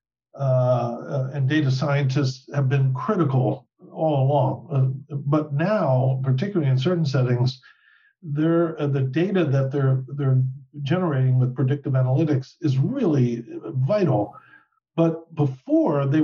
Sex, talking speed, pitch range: male, 125 wpm, 130-155 Hz